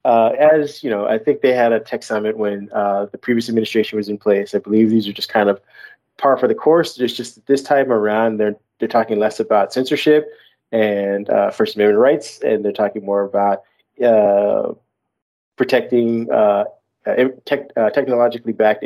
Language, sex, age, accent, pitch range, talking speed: English, male, 20-39, American, 105-130 Hz, 185 wpm